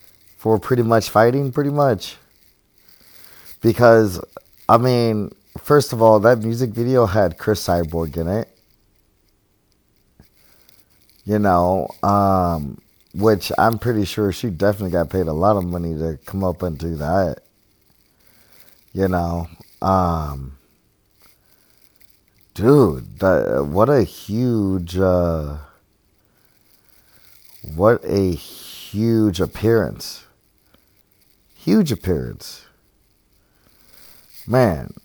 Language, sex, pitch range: English, male, 90-110 Hz